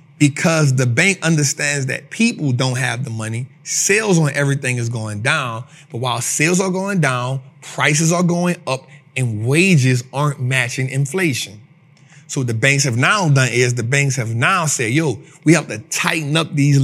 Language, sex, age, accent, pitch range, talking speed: English, male, 30-49, American, 135-170 Hz, 180 wpm